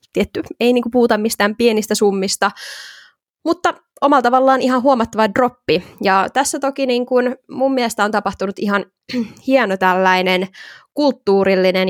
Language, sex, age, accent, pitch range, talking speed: Finnish, female, 20-39, native, 190-240 Hz, 130 wpm